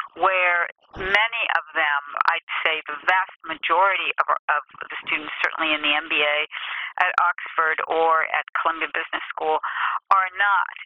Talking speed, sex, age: 145 wpm, female, 50-69